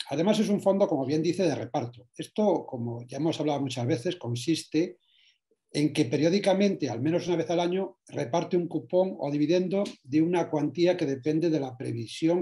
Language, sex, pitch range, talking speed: Spanish, male, 130-175 Hz, 190 wpm